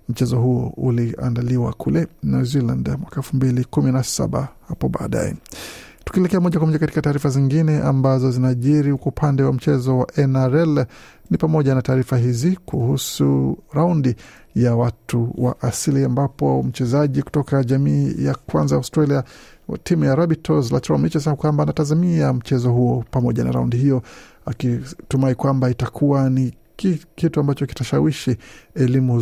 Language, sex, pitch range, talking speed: Swahili, male, 120-145 Hz, 135 wpm